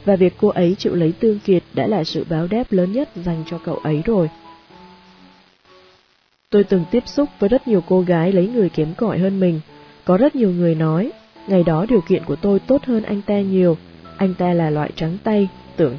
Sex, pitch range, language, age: female, 165-210 Hz, Vietnamese, 20-39